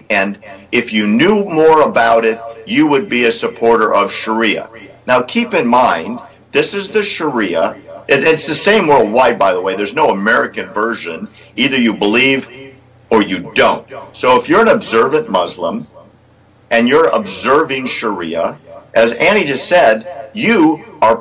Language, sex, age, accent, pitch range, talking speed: English, male, 50-69, American, 115-155 Hz, 155 wpm